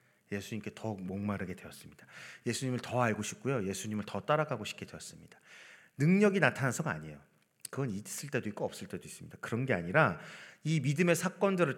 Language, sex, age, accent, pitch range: Korean, male, 40-59, native, 110-180 Hz